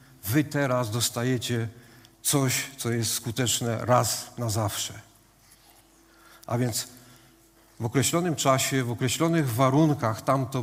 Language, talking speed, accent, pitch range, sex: Polish, 105 wpm, native, 120-140 Hz, male